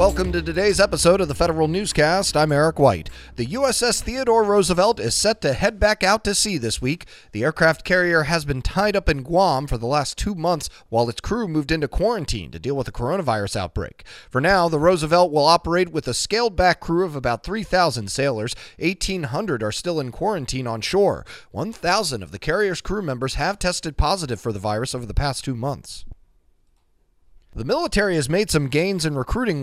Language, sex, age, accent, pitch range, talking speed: English, male, 30-49, American, 110-170 Hz, 195 wpm